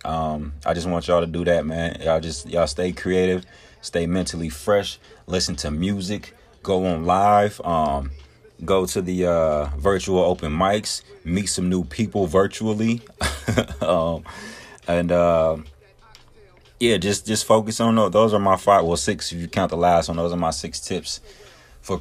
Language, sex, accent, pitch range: English, male, American, 80-95 Hz